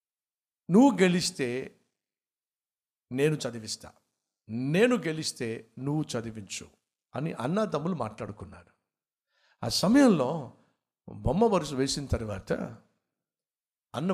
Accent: native